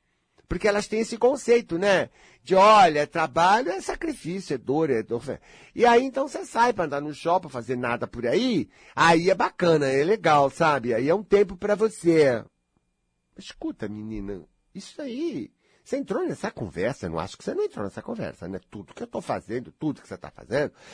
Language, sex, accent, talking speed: Portuguese, male, Brazilian, 200 wpm